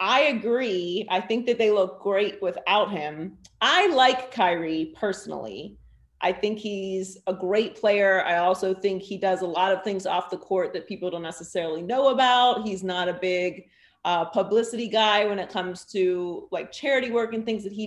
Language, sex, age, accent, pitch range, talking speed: English, female, 30-49, American, 185-225 Hz, 190 wpm